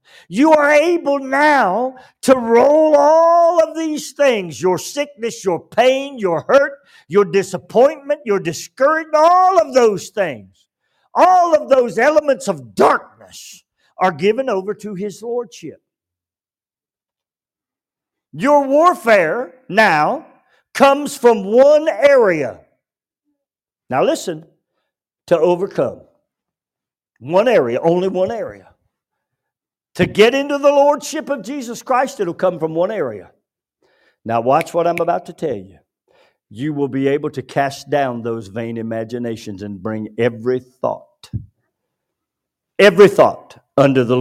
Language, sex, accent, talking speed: English, male, American, 125 wpm